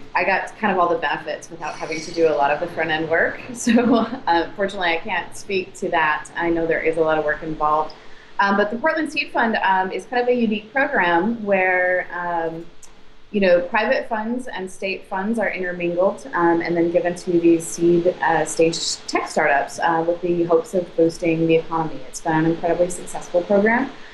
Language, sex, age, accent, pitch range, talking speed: English, female, 20-39, American, 155-185 Hz, 205 wpm